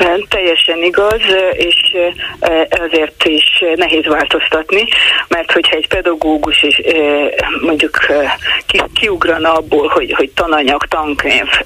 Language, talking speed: Hungarian, 100 wpm